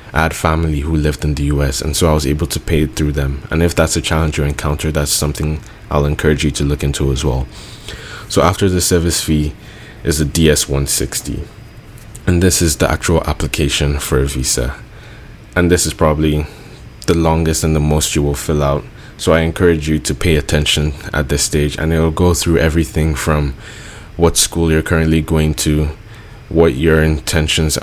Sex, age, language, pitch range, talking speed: male, 20-39, English, 75-90 Hz, 195 wpm